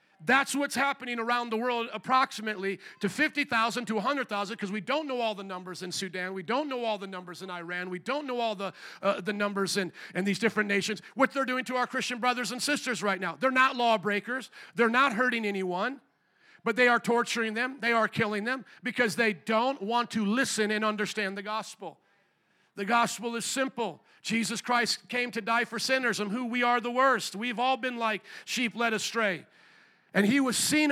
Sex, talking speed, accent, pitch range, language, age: male, 205 wpm, American, 215-270 Hz, English, 40-59